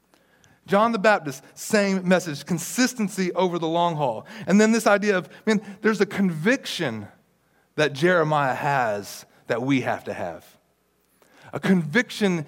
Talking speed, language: 140 wpm, English